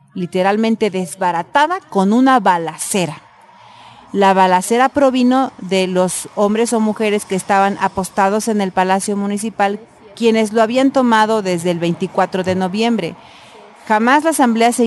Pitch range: 180-235 Hz